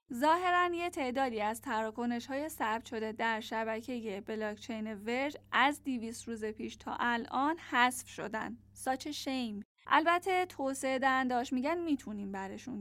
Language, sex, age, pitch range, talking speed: Persian, female, 10-29, 230-290 Hz, 125 wpm